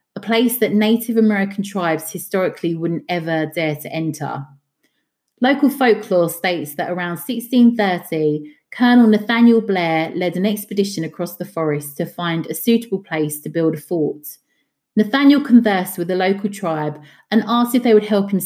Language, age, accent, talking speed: English, 30-49, British, 160 wpm